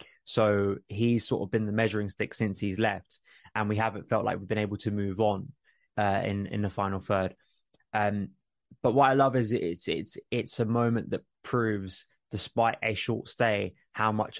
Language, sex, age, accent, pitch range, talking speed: English, male, 20-39, British, 100-115 Hz, 190 wpm